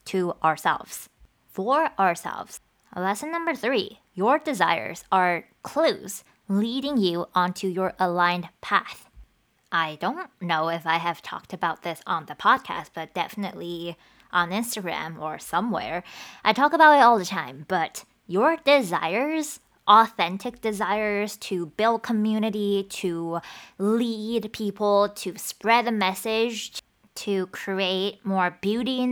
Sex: female